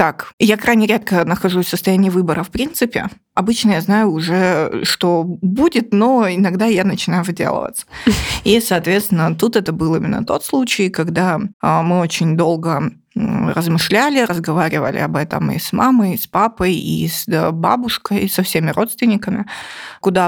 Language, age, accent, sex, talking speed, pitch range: Russian, 20-39, native, female, 150 wpm, 180-225 Hz